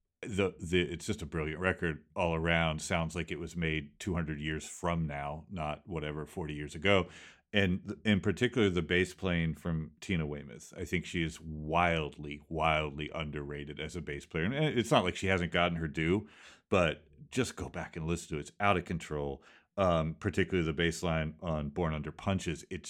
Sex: male